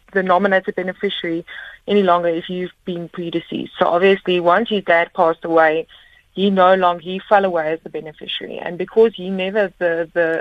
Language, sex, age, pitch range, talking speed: English, female, 20-39, 165-195 Hz, 180 wpm